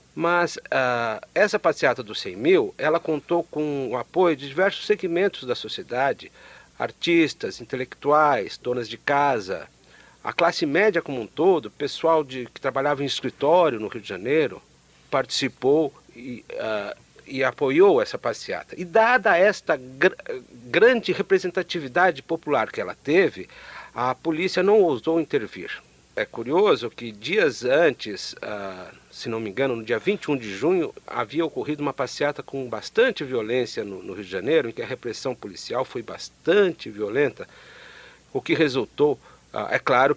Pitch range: 130-195 Hz